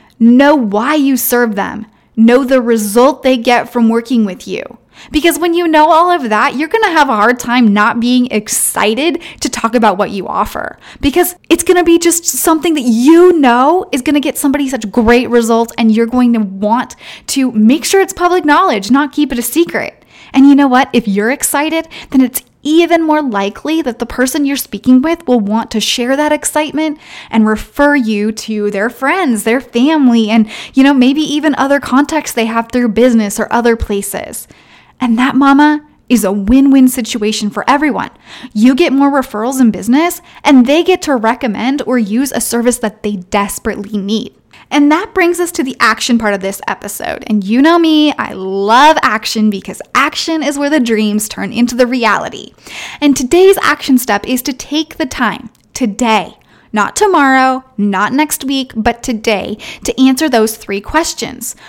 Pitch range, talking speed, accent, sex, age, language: 230-300 Hz, 190 wpm, American, female, 10-29, English